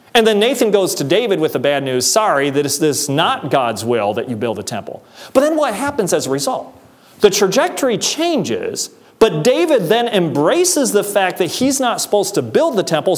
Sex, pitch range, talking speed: male, 160-235 Hz, 205 wpm